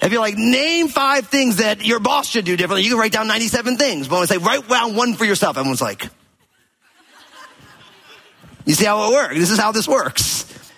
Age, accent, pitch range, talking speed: 30-49, American, 135-220 Hz, 210 wpm